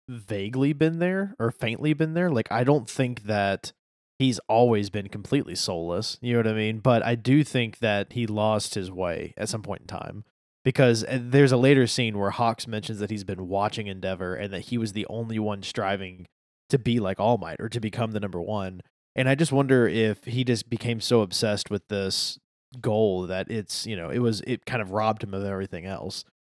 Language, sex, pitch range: English, male, 100-125 Hz